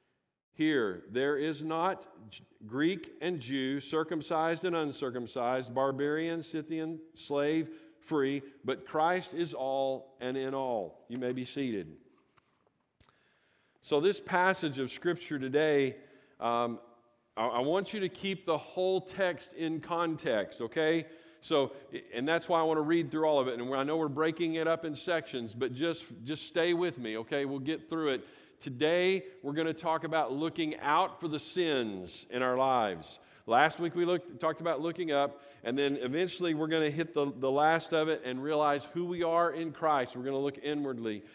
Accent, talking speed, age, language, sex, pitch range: American, 175 wpm, 40-59, English, male, 135-165 Hz